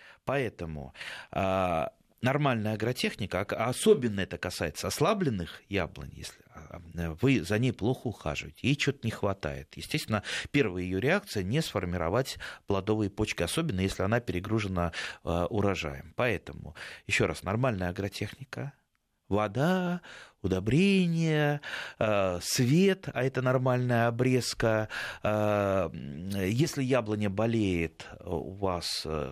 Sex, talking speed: male, 100 wpm